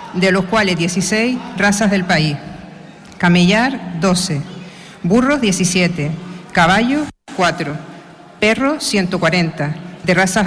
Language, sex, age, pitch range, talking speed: Spanish, female, 50-69, 175-210 Hz, 95 wpm